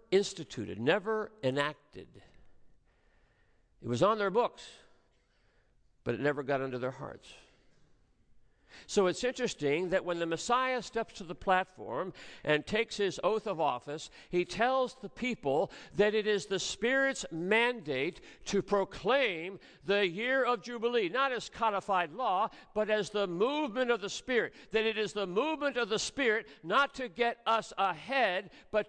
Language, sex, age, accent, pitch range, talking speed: English, male, 60-79, American, 160-225 Hz, 150 wpm